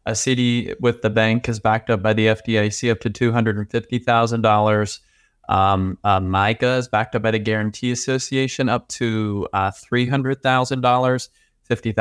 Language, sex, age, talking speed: English, male, 20-39, 130 wpm